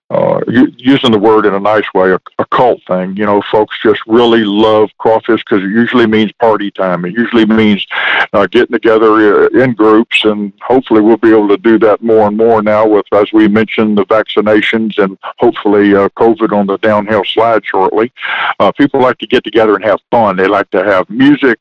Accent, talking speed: American, 205 wpm